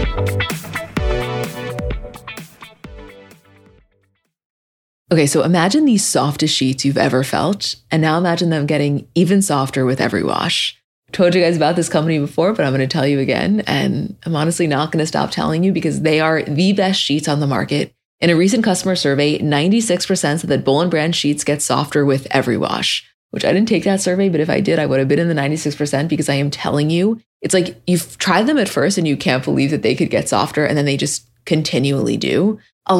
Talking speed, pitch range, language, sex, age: 205 wpm, 140-180 Hz, English, female, 20-39